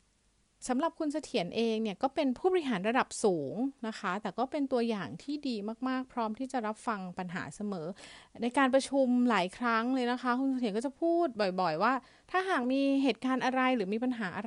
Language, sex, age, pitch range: Thai, female, 30-49, 200-260 Hz